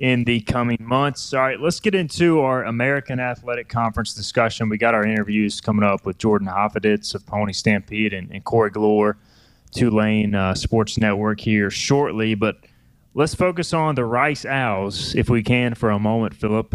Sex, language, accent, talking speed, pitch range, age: male, English, American, 185 wpm, 105-125 Hz, 20-39